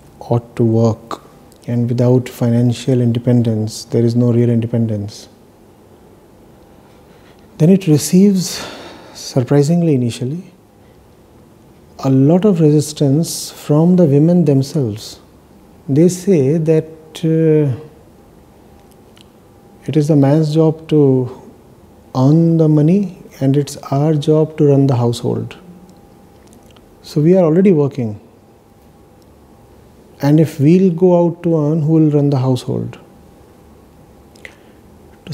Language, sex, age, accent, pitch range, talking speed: English, male, 50-69, Indian, 120-160 Hz, 110 wpm